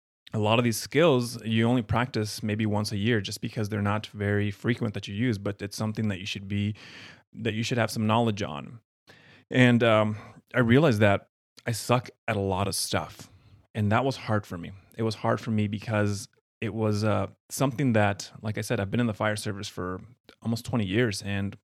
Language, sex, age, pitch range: English, male, 30-49, 100-120 Hz